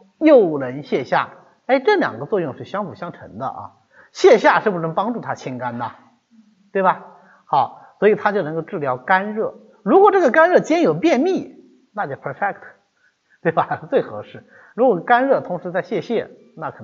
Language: Chinese